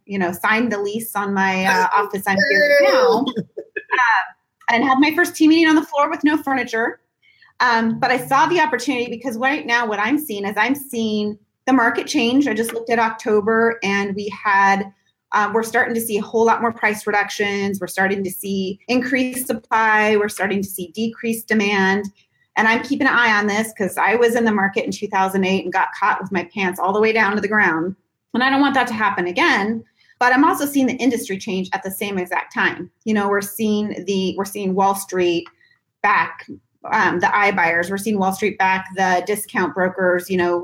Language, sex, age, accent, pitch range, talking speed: English, female, 30-49, American, 195-245 Hz, 210 wpm